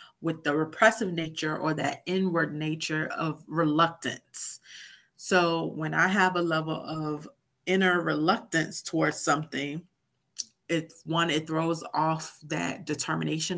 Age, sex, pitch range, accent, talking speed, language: 30-49, female, 150-170 Hz, American, 125 wpm, English